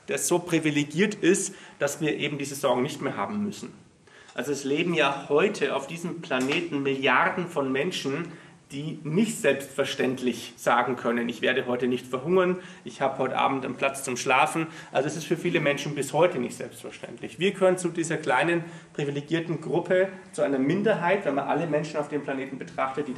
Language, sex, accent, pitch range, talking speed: German, male, German, 140-175 Hz, 185 wpm